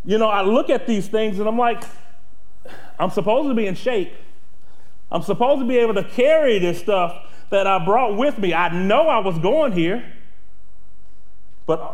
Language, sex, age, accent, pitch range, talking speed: English, male, 30-49, American, 180-240 Hz, 185 wpm